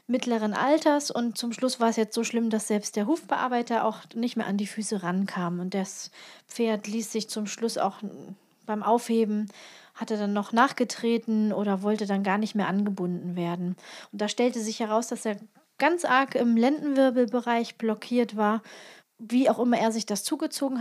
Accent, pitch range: German, 215-255 Hz